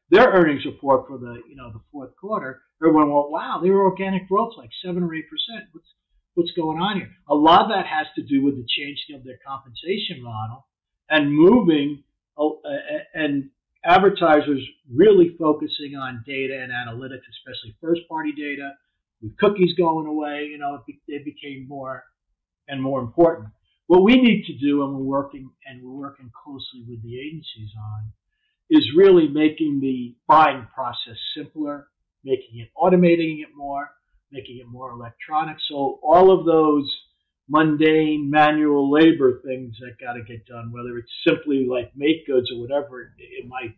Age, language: 50-69, English